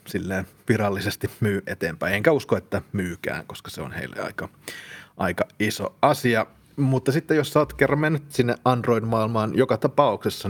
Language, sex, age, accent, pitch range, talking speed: Finnish, male, 30-49, native, 100-115 Hz, 150 wpm